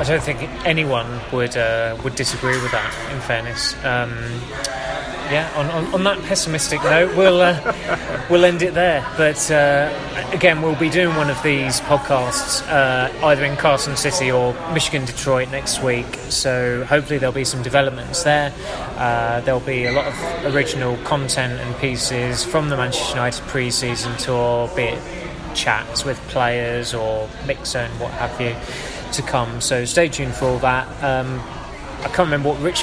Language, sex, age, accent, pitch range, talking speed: English, male, 20-39, British, 125-145 Hz, 170 wpm